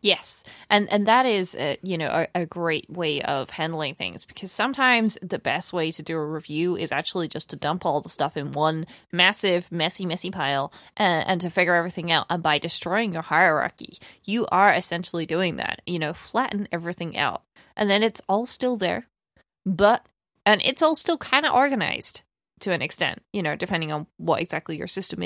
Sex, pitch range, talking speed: female, 165-200 Hz, 200 wpm